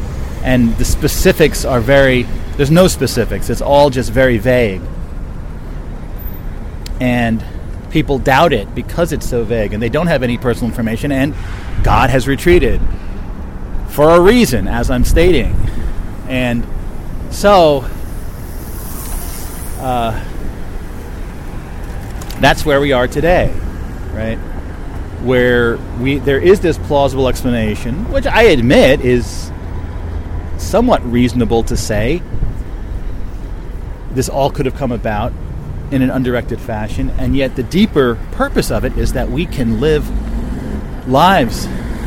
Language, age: English, 30-49